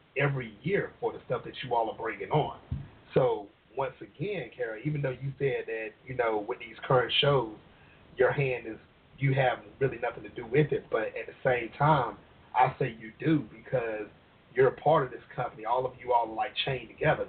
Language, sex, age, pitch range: English, male, 40-59, 125-165 Hz